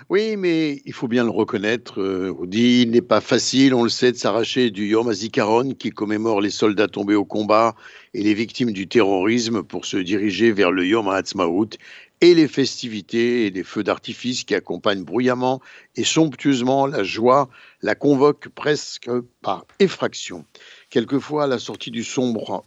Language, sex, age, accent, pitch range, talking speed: Italian, male, 60-79, French, 105-130 Hz, 170 wpm